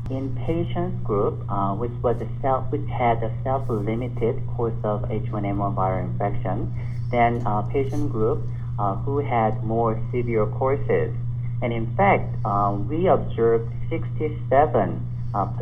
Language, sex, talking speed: English, male, 130 wpm